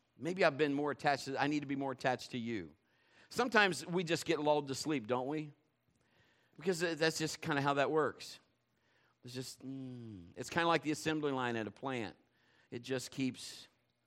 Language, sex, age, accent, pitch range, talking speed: English, male, 50-69, American, 125-190 Hz, 195 wpm